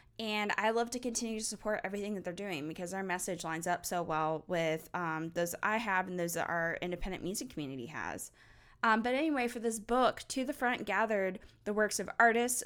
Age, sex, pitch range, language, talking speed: 10-29, female, 170-215 Hz, English, 220 wpm